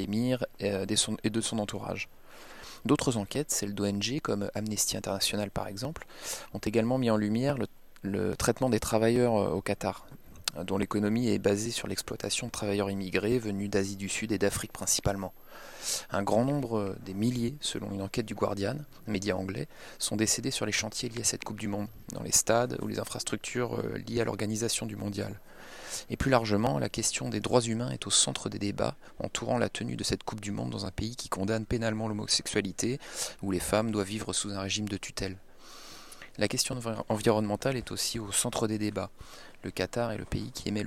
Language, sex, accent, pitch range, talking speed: French, male, French, 100-115 Hz, 190 wpm